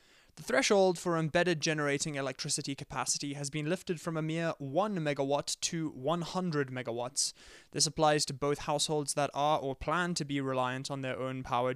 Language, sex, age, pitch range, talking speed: English, male, 20-39, 135-165 Hz, 175 wpm